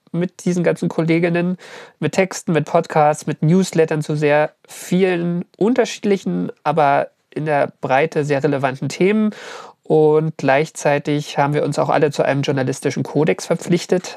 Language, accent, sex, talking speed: German, German, male, 140 wpm